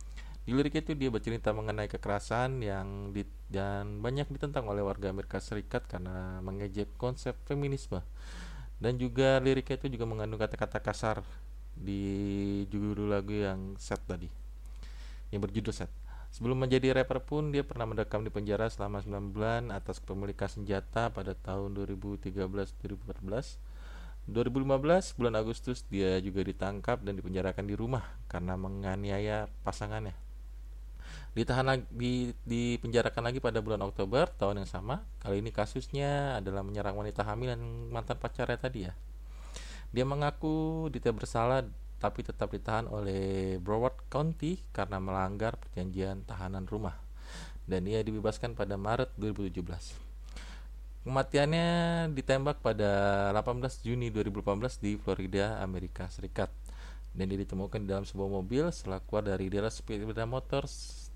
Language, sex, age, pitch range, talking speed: Indonesian, male, 20-39, 95-120 Hz, 130 wpm